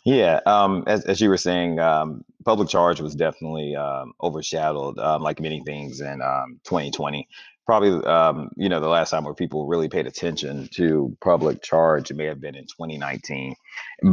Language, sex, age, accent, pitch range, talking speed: English, male, 30-49, American, 75-95 Hz, 180 wpm